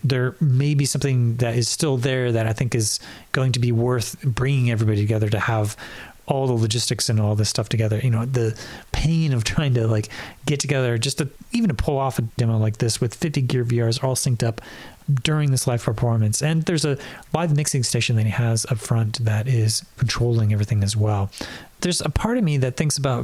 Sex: male